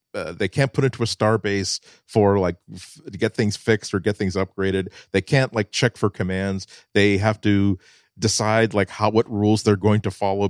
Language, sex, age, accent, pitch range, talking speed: English, male, 50-69, American, 95-120 Hz, 210 wpm